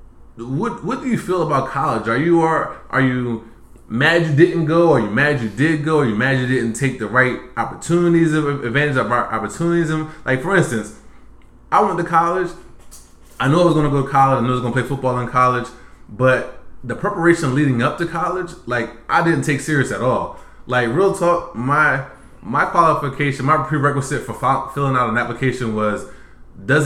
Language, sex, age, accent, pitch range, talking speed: English, male, 20-39, American, 120-155 Hz, 205 wpm